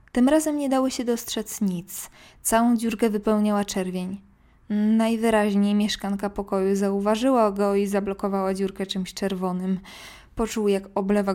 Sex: female